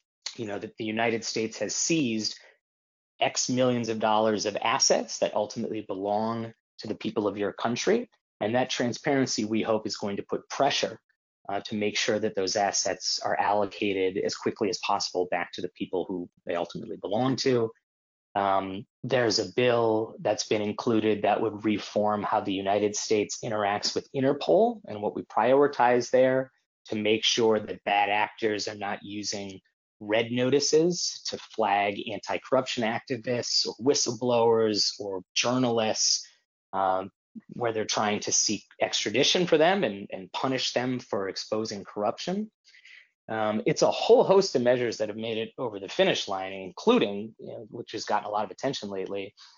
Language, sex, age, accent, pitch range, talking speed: English, male, 30-49, American, 100-120 Hz, 165 wpm